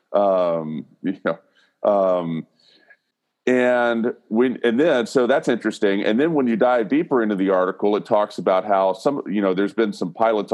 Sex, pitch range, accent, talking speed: male, 90-110 Hz, American, 175 wpm